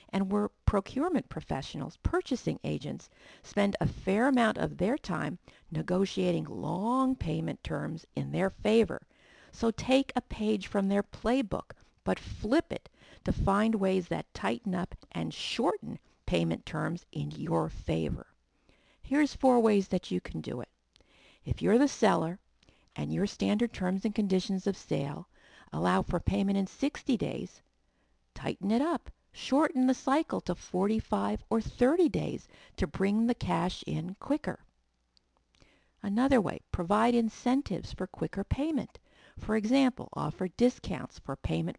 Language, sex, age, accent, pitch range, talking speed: English, female, 50-69, American, 180-235 Hz, 140 wpm